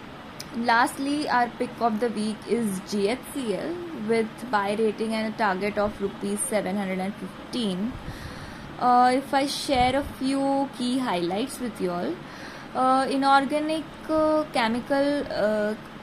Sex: female